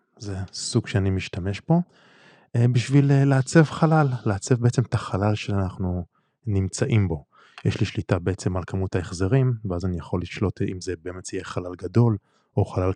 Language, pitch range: Hebrew, 90-120 Hz